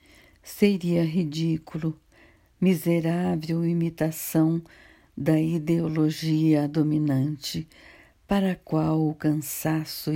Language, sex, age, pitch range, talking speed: Portuguese, female, 60-79, 150-170 Hz, 70 wpm